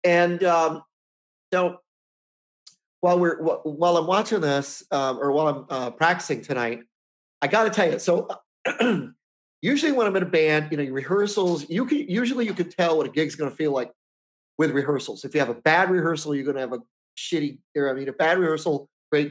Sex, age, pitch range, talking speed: male, 40-59, 135-175 Hz, 205 wpm